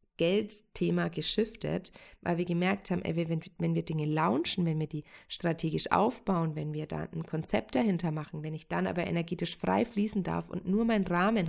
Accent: German